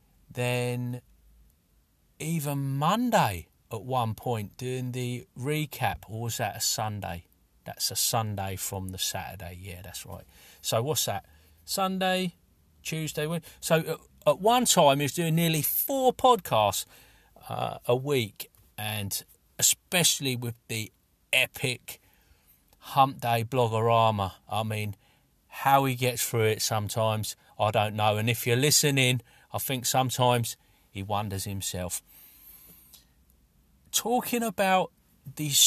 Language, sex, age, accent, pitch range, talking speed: English, male, 40-59, British, 100-160 Hz, 125 wpm